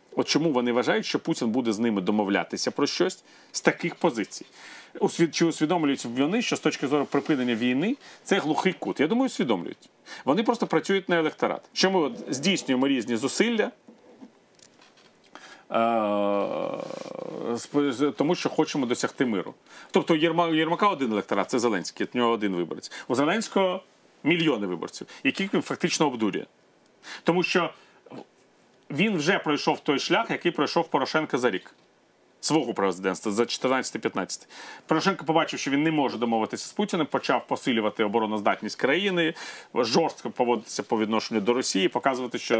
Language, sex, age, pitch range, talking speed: Ukrainian, male, 40-59, 120-175 Hz, 140 wpm